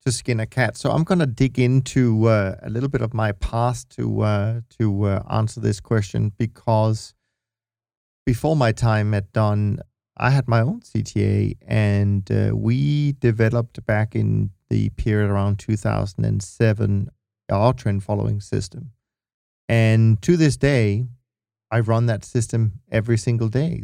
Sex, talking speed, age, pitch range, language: male, 150 wpm, 40-59, 110-125 Hz, English